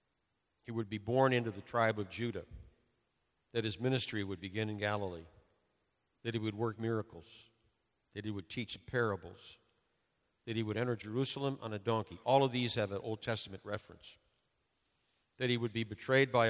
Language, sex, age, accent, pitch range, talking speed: English, male, 50-69, American, 100-130 Hz, 175 wpm